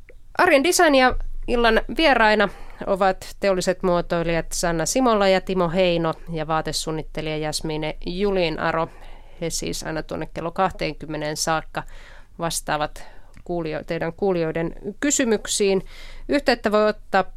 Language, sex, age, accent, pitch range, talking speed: Finnish, female, 30-49, native, 165-205 Hz, 110 wpm